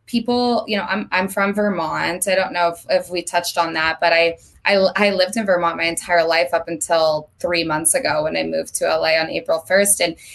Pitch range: 175-210 Hz